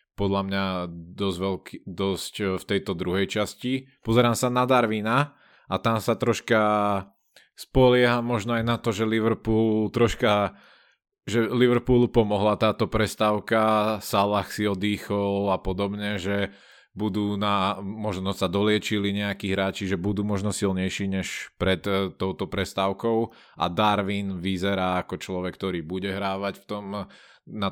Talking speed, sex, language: 135 wpm, male, Slovak